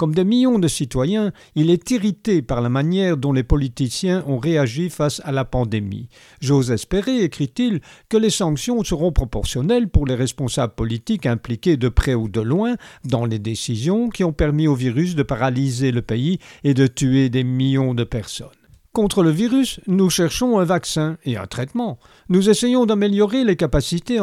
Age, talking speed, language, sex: 50-69, 180 wpm, French, male